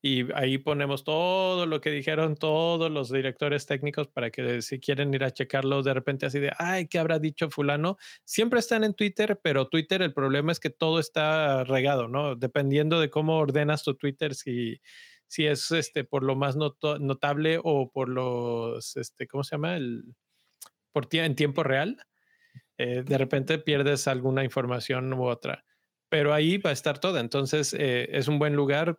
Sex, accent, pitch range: male, Mexican, 135-155 Hz